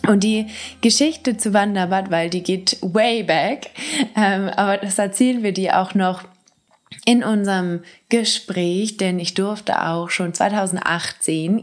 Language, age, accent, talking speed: German, 20-39, German, 140 wpm